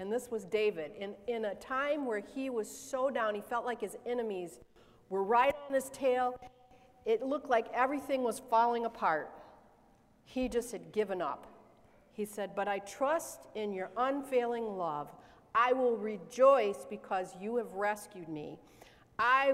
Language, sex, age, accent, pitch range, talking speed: English, female, 50-69, American, 205-260 Hz, 165 wpm